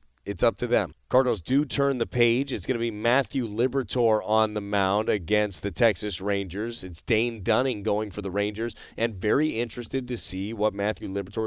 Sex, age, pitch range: male, 30-49, 100-120 Hz